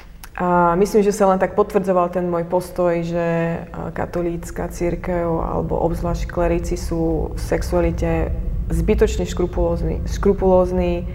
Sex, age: female, 20-39